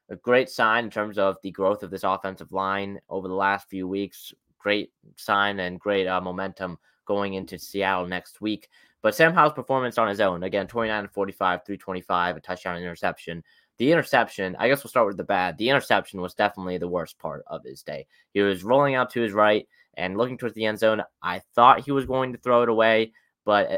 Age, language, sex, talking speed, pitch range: 20-39, English, male, 220 wpm, 95-115 Hz